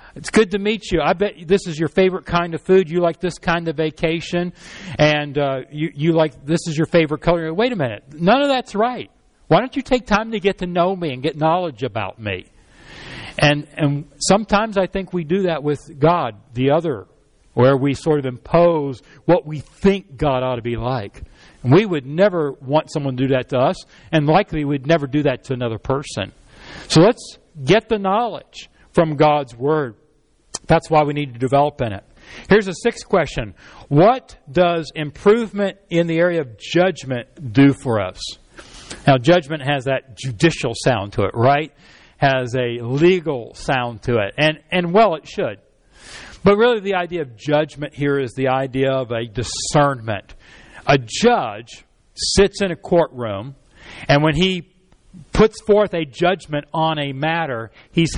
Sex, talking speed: male, 185 wpm